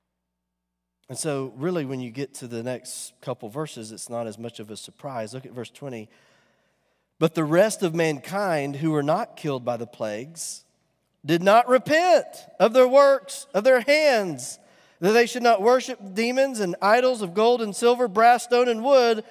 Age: 40-59